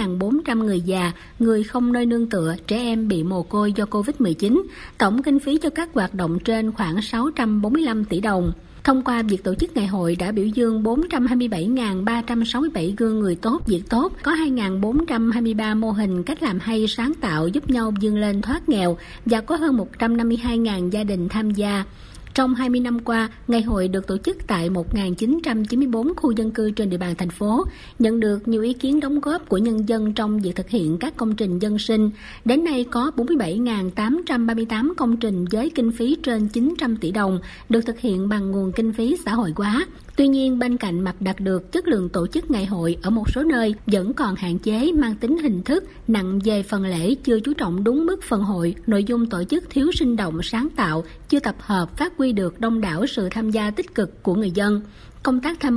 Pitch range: 200-255 Hz